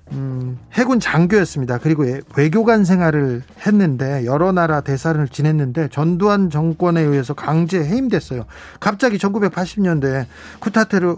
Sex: male